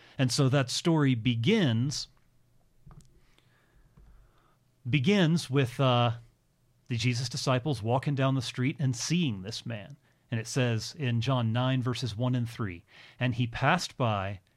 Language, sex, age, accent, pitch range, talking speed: English, male, 40-59, American, 120-145 Hz, 135 wpm